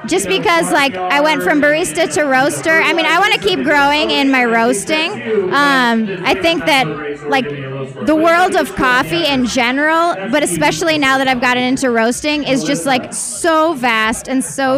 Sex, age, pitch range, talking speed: female, 20-39, 240-285 Hz, 185 wpm